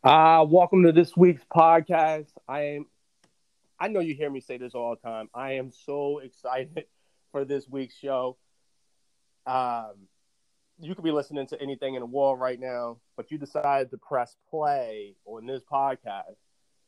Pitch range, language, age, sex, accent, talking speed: 130-160 Hz, English, 30-49, male, American, 170 wpm